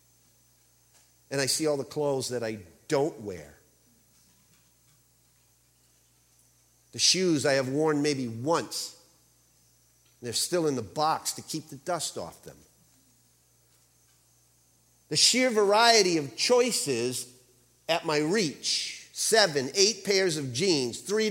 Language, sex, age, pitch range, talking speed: English, male, 50-69, 125-200 Hz, 120 wpm